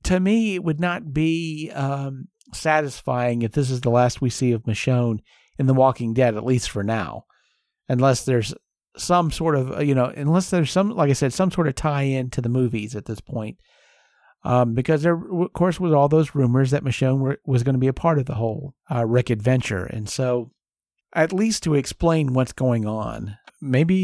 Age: 50-69